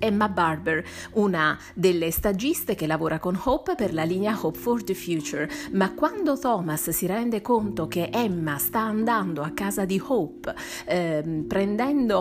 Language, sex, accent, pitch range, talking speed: Italian, female, native, 175-235 Hz, 155 wpm